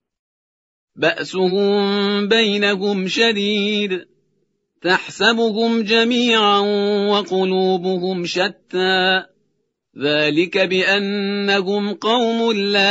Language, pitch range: Persian, 190-230 Hz